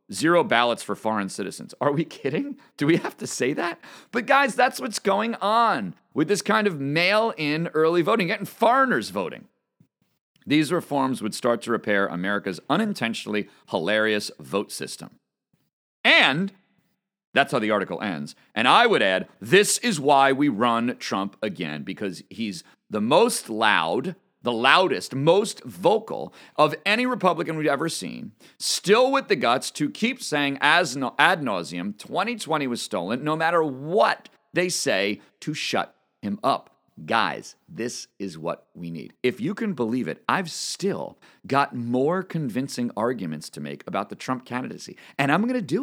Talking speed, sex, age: 160 wpm, male, 40-59